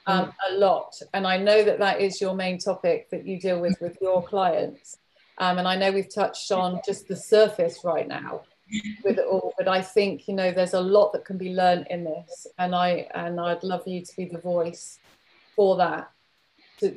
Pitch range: 180-200 Hz